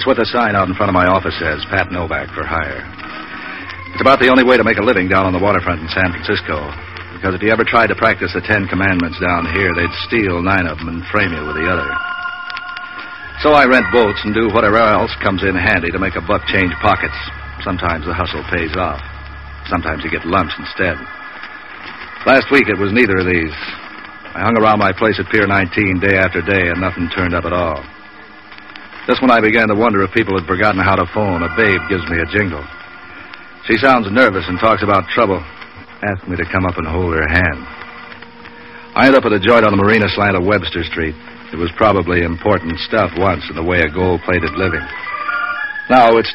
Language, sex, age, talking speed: English, male, 60-79, 215 wpm